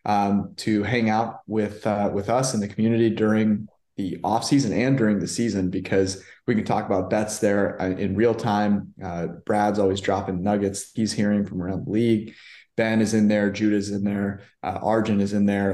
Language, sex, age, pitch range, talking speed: English, male, 20-39, 95-110 Hz, 200 wpm